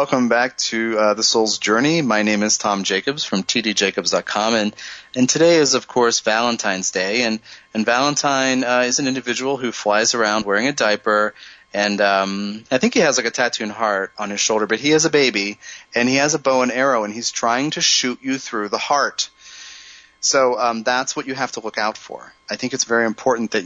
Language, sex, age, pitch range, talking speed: English, male, 30-49, 100-120 Hz, 215 wpm